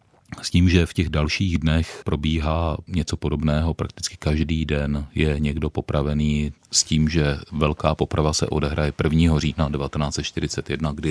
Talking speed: 145 wpm